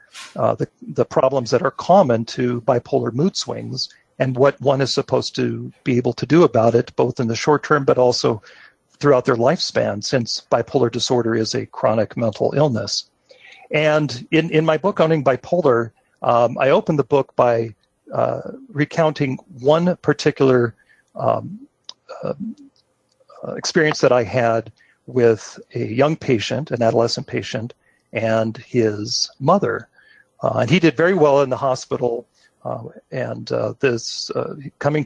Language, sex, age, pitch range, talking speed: English, male, 40-59, 120-150 Hz, 150 wpm